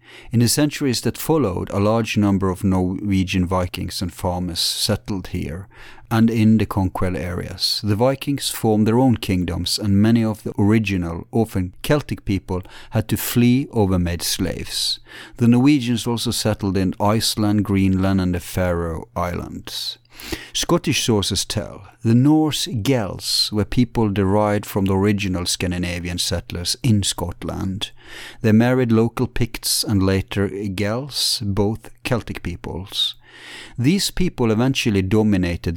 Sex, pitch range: male, 95-115 Hz